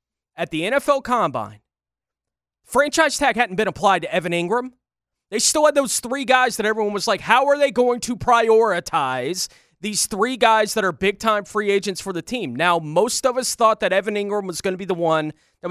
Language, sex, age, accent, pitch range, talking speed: English, male, 20-39, American, 185-230 Hz, 205 wpm